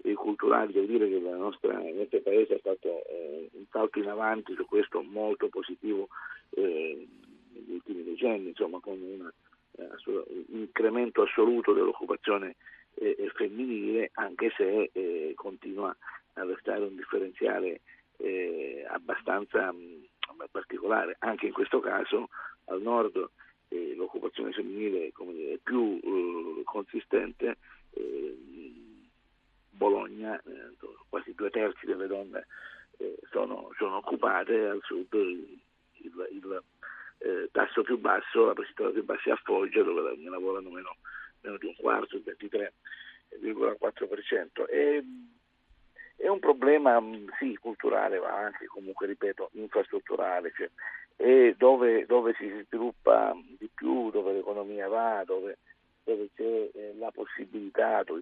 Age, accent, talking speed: 50-69, native, 125 wpm